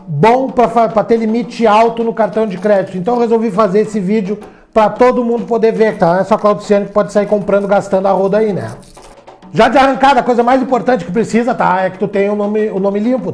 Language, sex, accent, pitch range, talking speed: Portuguese, male, Brazilian, 195-235 Hz, 245 wpm